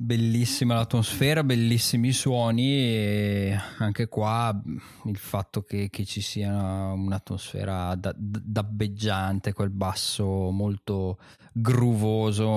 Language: Italian